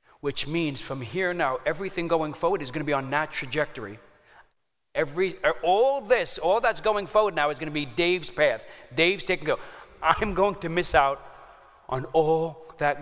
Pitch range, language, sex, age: 145-165 Hz, English, male, 40-59